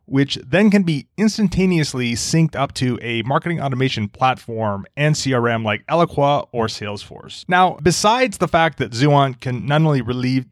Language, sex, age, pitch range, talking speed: English, male, 30-49, 120-160 Hz, 160 wpm